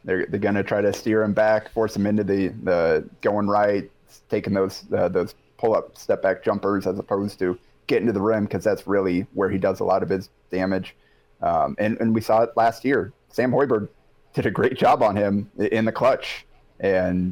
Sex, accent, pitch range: male, American, 95-120 Hz